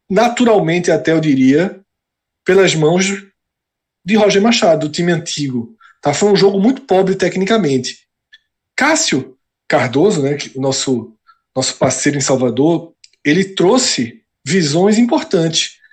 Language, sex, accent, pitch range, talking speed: Portuguese, male, Brazilian, 150-220 Hz, 115 wpm